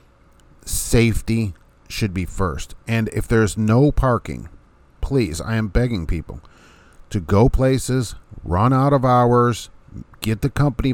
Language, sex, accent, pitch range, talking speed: English, male, American, 90-115 Hz, 130 wpm